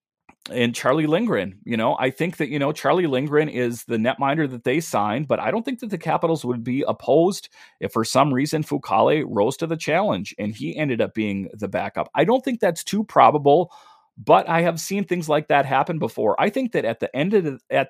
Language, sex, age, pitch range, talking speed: English, male, 40-59, 120-155 Hz, 210 wpm